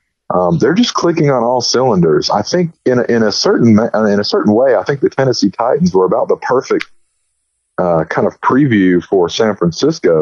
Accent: American